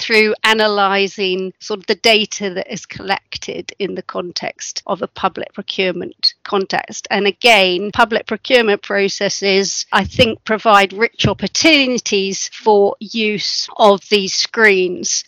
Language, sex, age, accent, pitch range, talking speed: English, female, 40-59, British, 195-230 Hz, 125 wpm